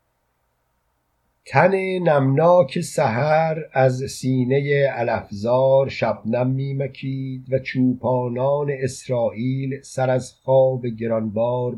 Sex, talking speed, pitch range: male, 80 wpm, 115-140 Hz